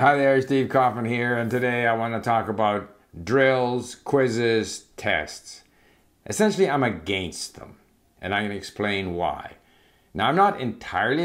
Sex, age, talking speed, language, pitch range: male, 50-69, 155 wpm, English, 105-135 Hz